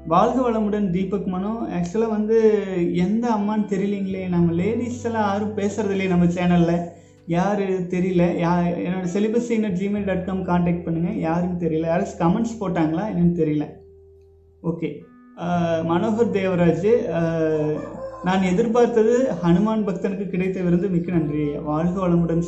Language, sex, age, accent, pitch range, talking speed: Tamil, male, 20-39, native, 170-215 Hz, 130 wpm